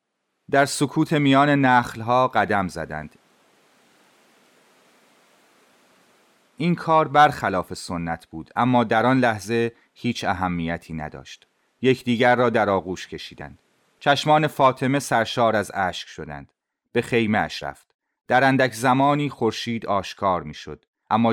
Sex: male